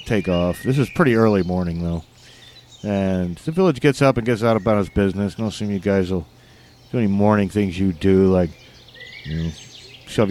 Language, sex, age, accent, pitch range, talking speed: English, male, 40-59, American, 95-125 Hz, 200 wpm